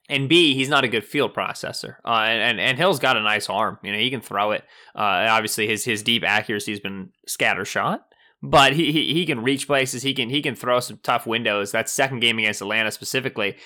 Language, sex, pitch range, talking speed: English, male, 110-135 Hz, 235 wpm